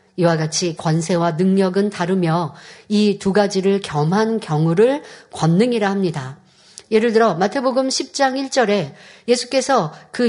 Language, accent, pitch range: Korean, native, 175-235 Hz